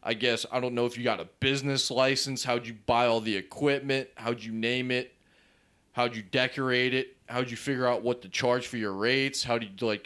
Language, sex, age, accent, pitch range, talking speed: English, male, 30-49, American, 115-135 Hz, 235 wpm